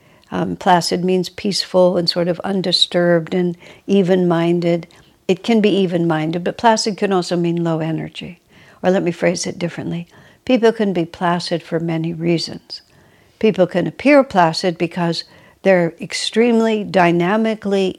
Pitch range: 170-195 Hz